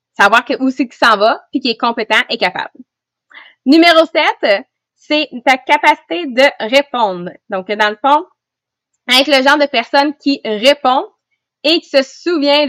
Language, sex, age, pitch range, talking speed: English, female, 20-39, 225-290 Hz, 160 wpm